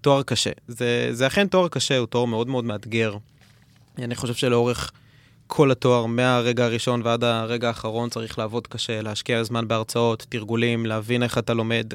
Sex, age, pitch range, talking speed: male, 20-39, 115-130 Hz, 165 wpm